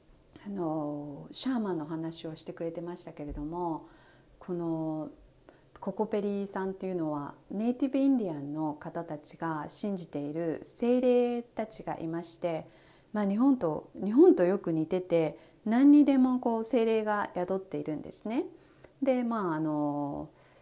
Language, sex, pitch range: Japanese, female, 155-225 Hz